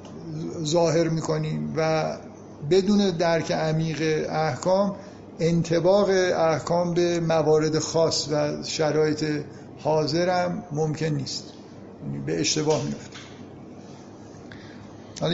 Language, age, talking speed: Persian, 50-69, 85 wpm